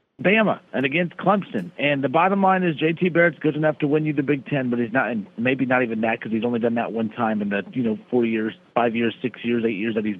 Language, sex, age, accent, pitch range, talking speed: English, male, 40-59, American, 120-155 Hz, 280 wpm